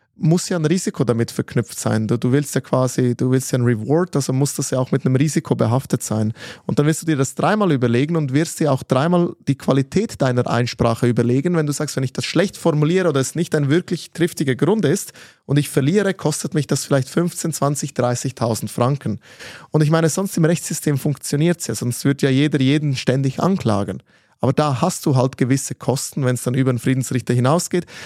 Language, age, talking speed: German, 20-39, 215 wpm